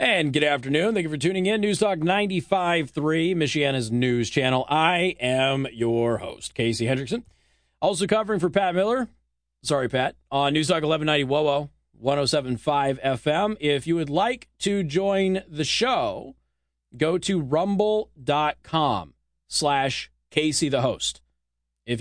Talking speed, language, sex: 130 wpm, English, male